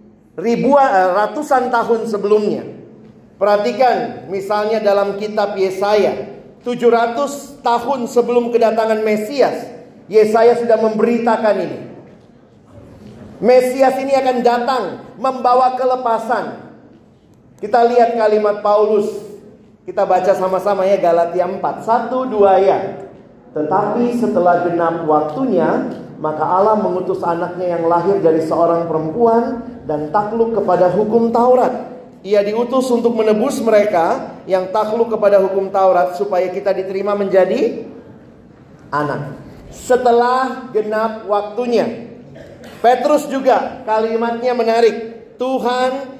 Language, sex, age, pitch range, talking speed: Indonesian, male, 40-59, 195-245 Hz, 100 wpm